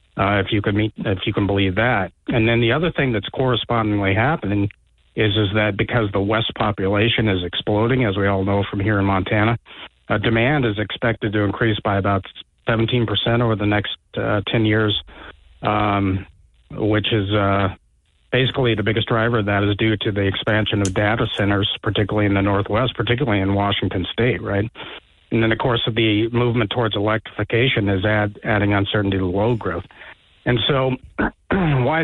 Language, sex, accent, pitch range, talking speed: English, male, American, 100-120 Hz, 180 wpm